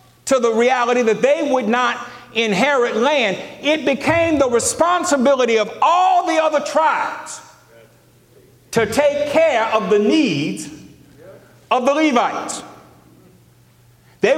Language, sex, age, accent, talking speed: English, male, 60-79, American, 115 wpm